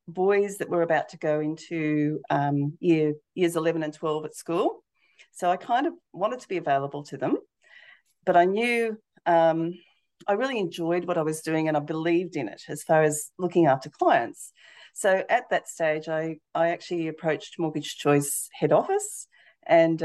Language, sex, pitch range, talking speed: English, female, 160-195 Hz, 180 wpm